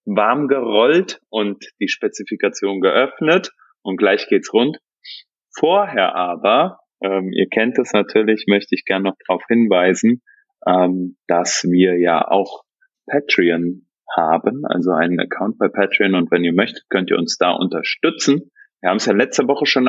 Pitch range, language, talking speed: 95-150 Hz, German, 155 wpm